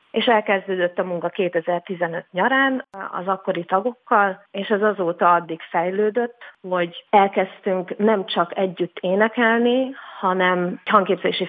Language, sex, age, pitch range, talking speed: Hungarian, female, 30-49, 175-210 Hz, 120 wpm